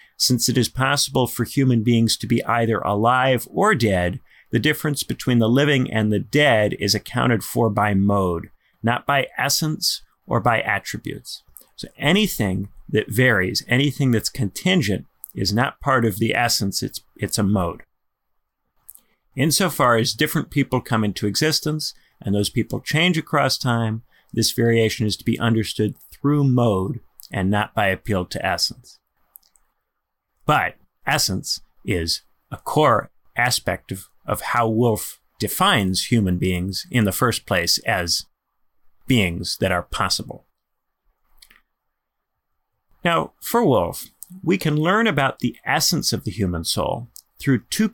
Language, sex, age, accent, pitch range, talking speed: English, male, 40-59, American, 105-135 Hz, 140 wpm